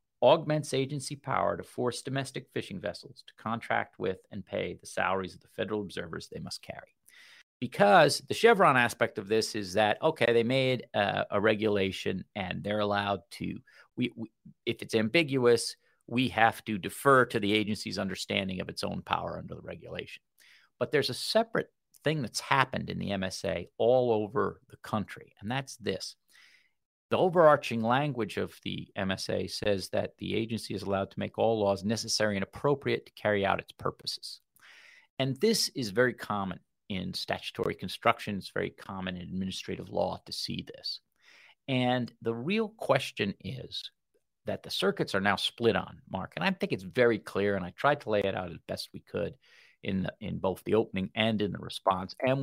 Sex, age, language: male, 50-69, English